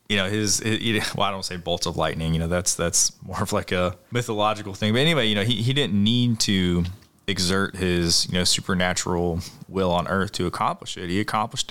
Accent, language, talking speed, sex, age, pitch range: American, English, 220 wpm, male, 20-39, 90-110 Hz